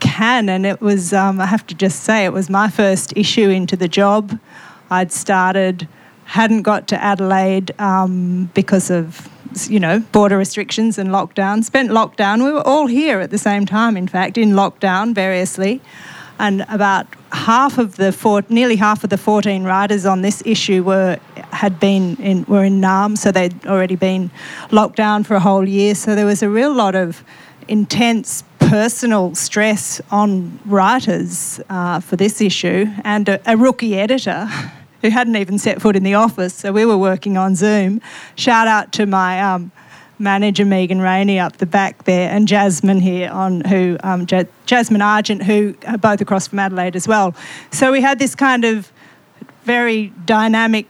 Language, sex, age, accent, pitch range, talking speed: English, female, 40-59, Australian, 190-220 Hz, 175 wpm